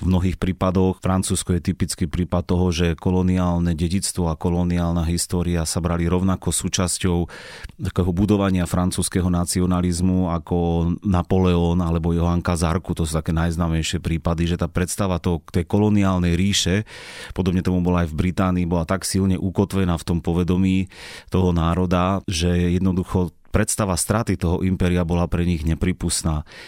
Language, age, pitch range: Slovak, 30-49, 85-95 Hz